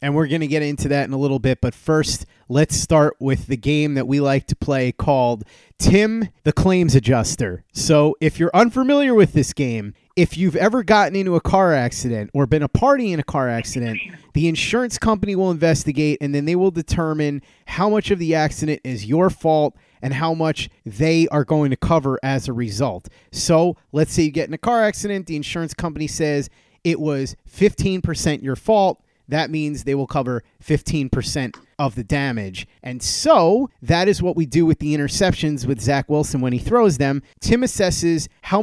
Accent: American